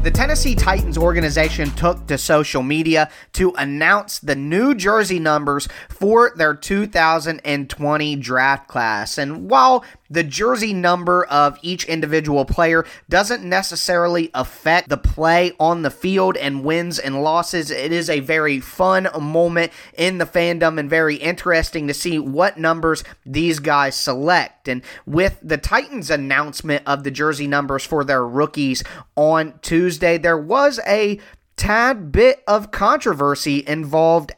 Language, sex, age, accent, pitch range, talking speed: English, male, 30-49, American, 145-175 Hz, 140 wpm